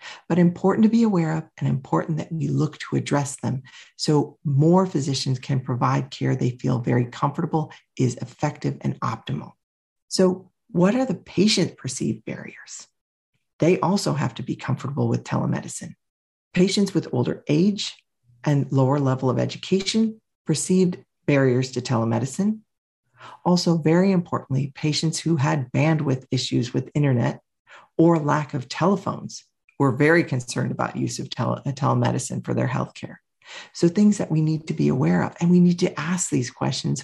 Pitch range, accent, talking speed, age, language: 125-180 Hz, American, 155 wpm, 40-59, English